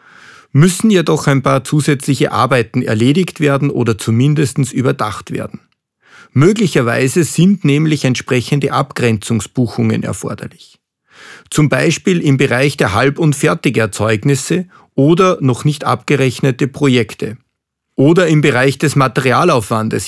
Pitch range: 125-155 Hz